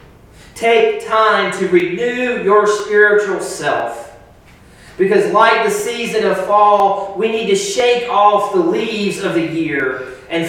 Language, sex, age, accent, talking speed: English, male, 30-49, American, 135 wpm